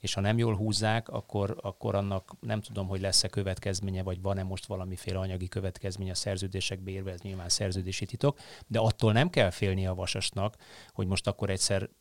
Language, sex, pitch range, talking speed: Hungarian, male, 95-110 Hz, 185 wpm